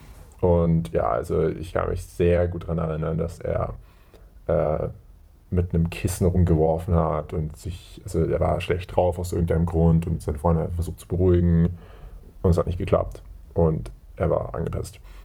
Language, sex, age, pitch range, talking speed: English, male, 30-49, 85-95 Hz, 170 wpm